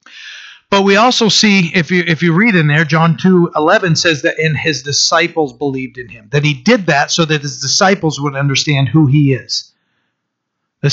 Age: 30-49